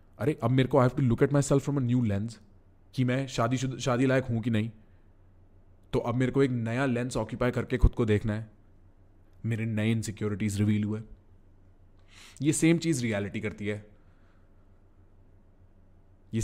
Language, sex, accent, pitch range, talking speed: English, male, Indian, 95-130 Hz, 170 wpm